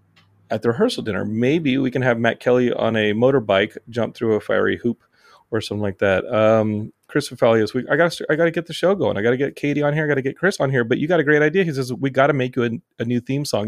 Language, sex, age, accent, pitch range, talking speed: English, male, 30-49, American, 110-145 Hz, 280 wpm